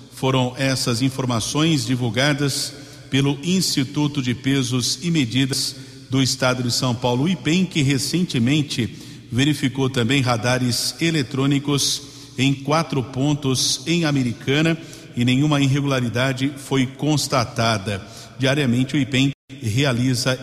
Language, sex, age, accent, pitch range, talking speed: Portuguese, male, 50-69, Brazilian, 130-145 Hz, 110 wpm